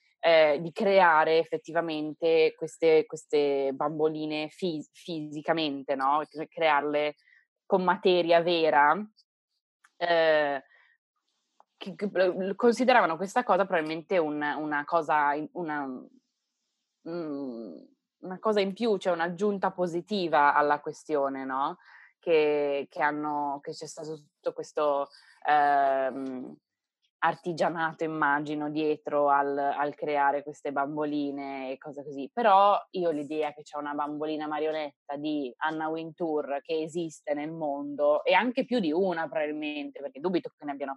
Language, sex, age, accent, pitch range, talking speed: Italian, female, 20-39, native, 145-180 Hz, 125 wpm